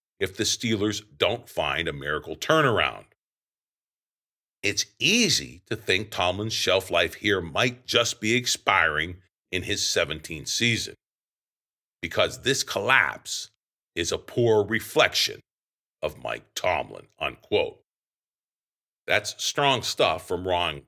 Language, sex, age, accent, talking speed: English, male, 50-69, American, 115 wpm